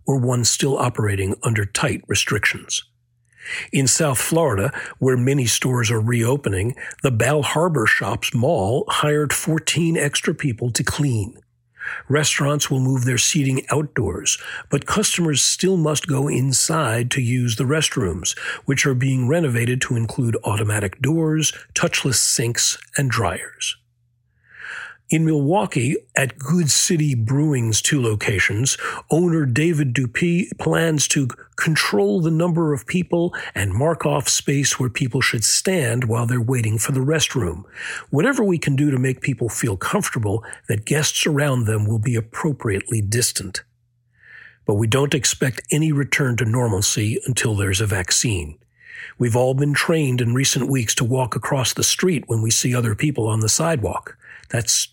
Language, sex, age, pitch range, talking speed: English, male, 40-59, 120-150 Hz, 150 wpm